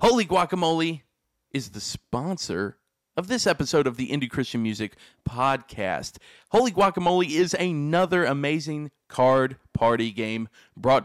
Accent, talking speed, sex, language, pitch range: American, 125 wpm, male, English, 110-155 Hz